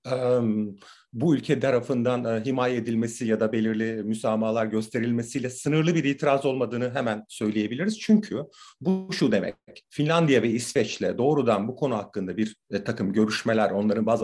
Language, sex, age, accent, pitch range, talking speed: Turkish, male, 40-59, native, 110-160 Hz, 135 wpm